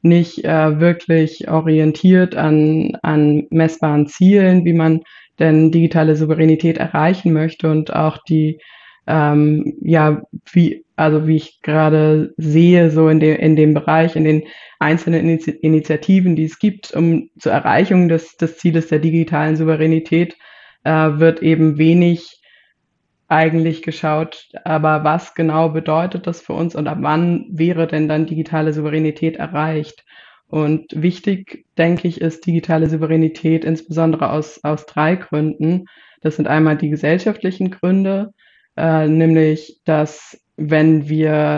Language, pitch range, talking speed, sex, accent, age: German, 155-165 Hz, 135 wpm, female, German, 20-39